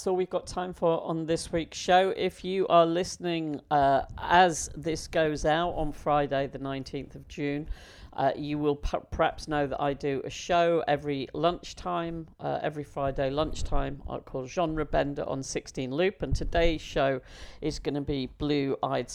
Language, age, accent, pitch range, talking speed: English, 50-69, British, 135-170 Hz, 175 wpm